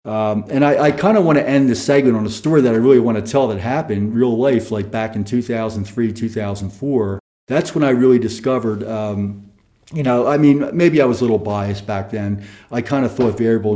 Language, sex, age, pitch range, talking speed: English, male, 40-59, 105-125 Hz, 225 wpm